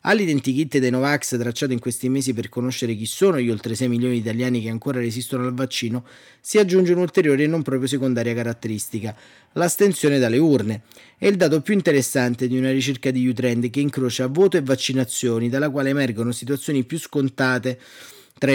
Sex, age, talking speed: male, 30-49, 180 wpm